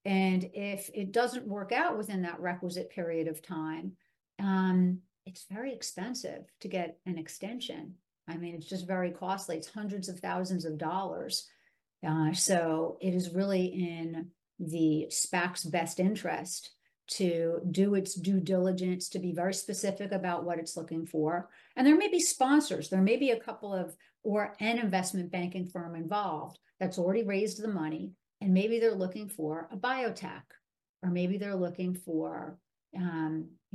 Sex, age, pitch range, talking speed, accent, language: female, 50-69, 165-195 Hz, 160 wpm, American, English